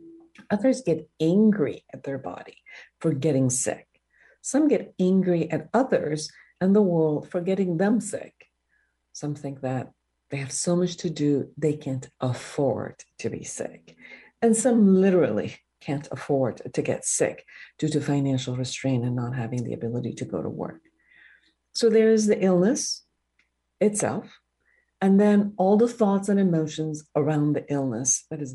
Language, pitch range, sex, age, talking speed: English, 140-215 Hz, female, 60-79, 155 wpm